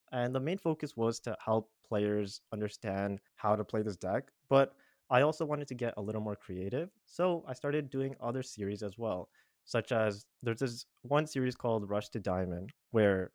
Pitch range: 105-130 Hz